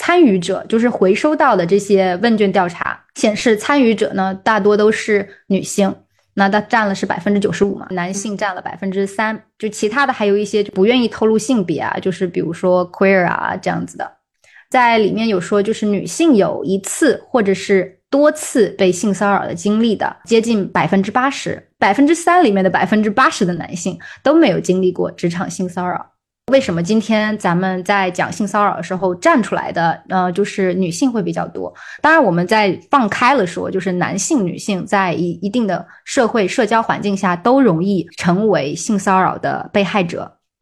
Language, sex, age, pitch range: Chinese, female, 20-39, 185-225 Hz